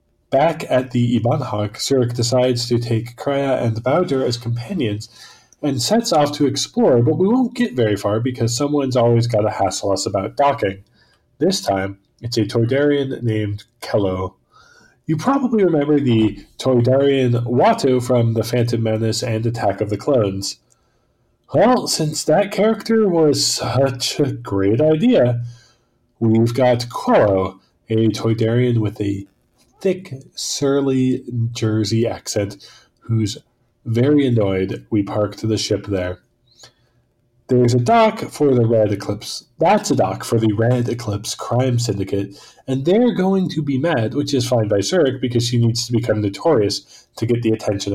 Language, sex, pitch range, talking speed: English, male, 110-140 Hz, 150 wpm